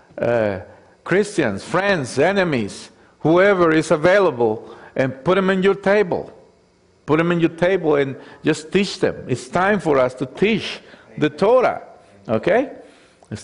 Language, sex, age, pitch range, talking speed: English, male, 50-69, 140-185 Hz, 145 wpm